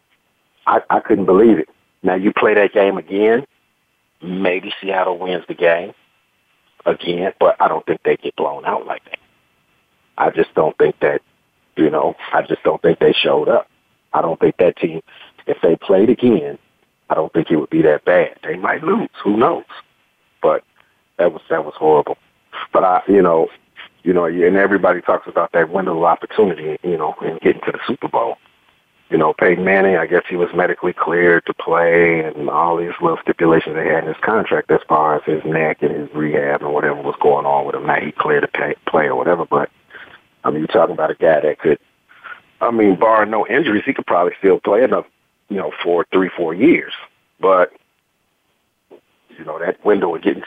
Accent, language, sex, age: American, English, male, 40-59